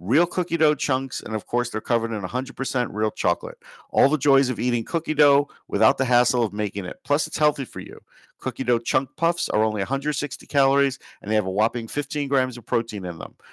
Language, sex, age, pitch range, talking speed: English, male, 50-69, 115-140 Hz, 220 wpm